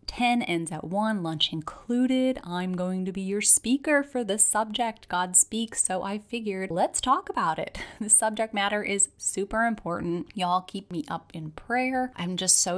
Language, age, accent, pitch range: English, 30-49, American, 170-210 Hz